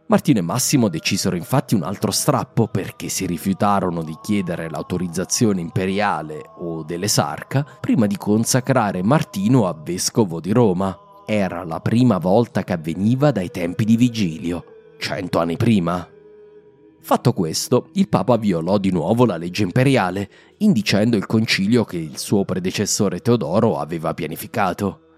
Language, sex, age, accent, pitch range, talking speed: Italian, male, 30-49, native, 95-155 Hz, 140 wpm